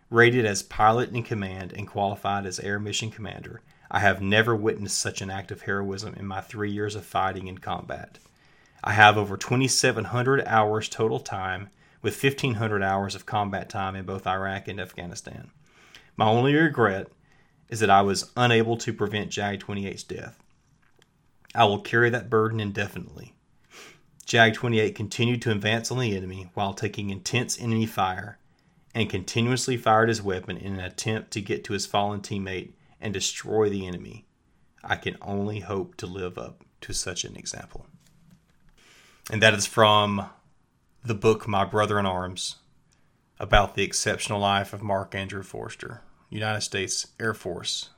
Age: 30-49